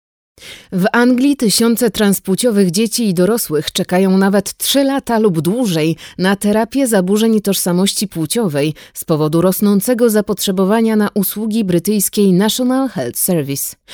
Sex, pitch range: female, 165-220 Hz